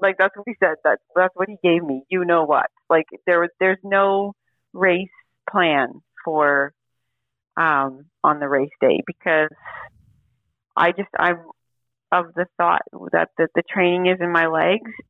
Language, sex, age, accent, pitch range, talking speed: English, female, 40-59, American, 155-185 Hz, 165 wpm